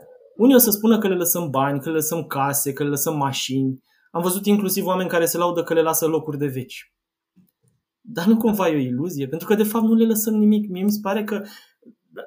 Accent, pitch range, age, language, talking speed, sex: native, 145-195 Hz, 20-39, Romanian, 240 wpm, male